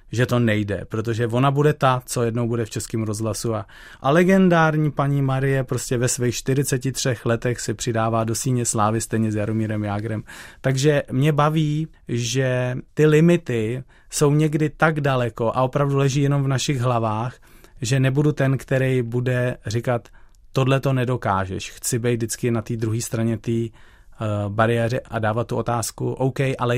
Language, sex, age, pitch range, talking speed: Czech, male, 30-49, 110-135 Hz, 160 wpm